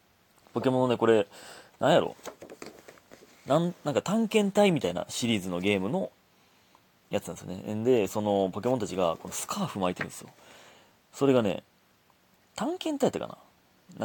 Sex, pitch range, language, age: male, 95-130 Hz, Japanese, 30-49